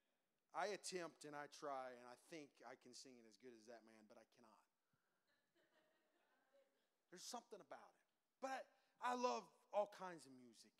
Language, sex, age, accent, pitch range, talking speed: English, male, 30-49, American, 150-235 Hz, 170 wpm